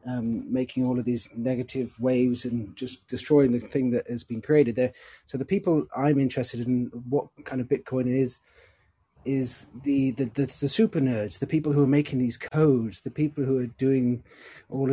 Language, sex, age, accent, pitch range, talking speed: English, male, 30-49, British, 125-140 Hz, 195 wpm